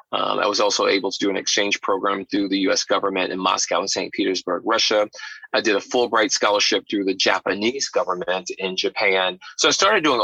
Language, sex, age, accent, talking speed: English, male, 30-49, American, 205 wpm